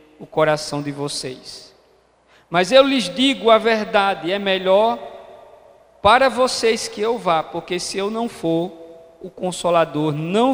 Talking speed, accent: 140 wpm, Brazilian